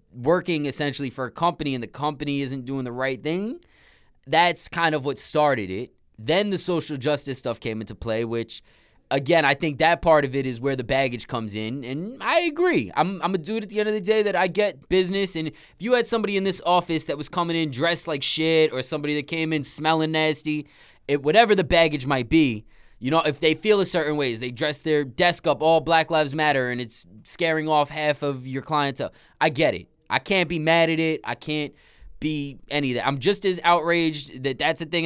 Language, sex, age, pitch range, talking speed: English, male, 20-39, 130-165 Hz, 230 wpm